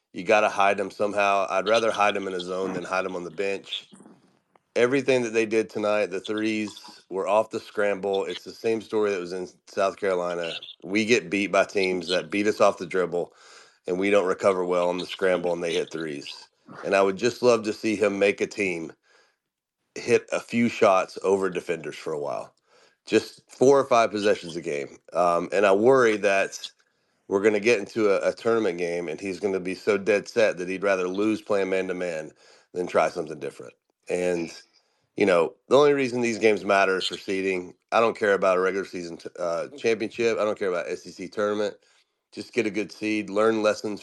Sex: male